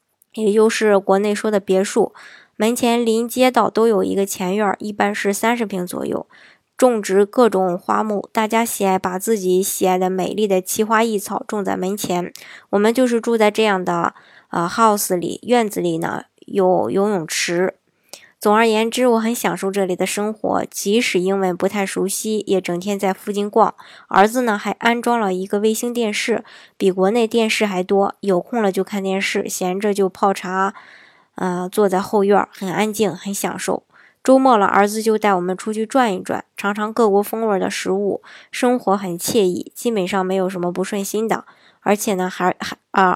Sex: male